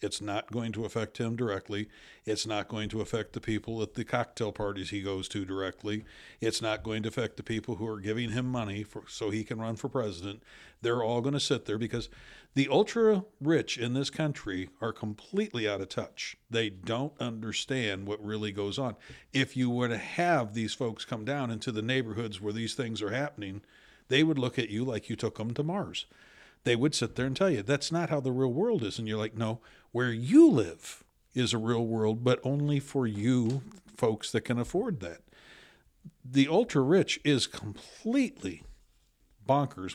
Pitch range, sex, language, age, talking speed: 110-140 Hz, male, English, 60-79, 200 wpm